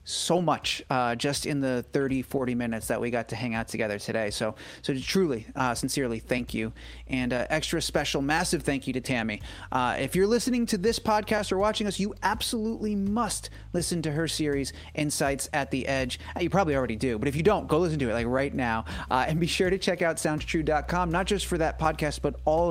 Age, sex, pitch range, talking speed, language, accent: 30-49, male, 135-205 Hz, 220 wpm, English, American